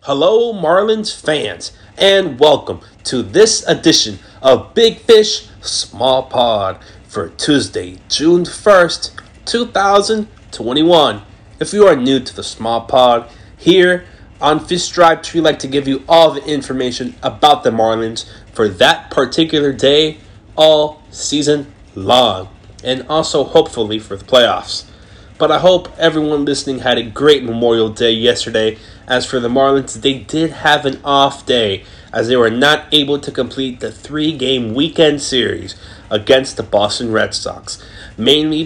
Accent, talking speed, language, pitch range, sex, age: American, 145 wpm, English, 110-155 Hz, male, 30-49